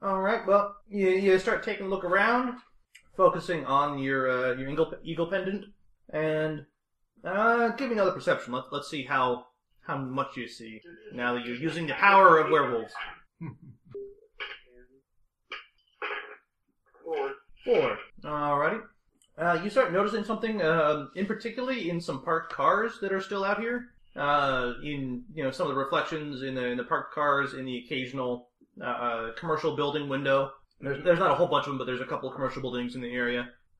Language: English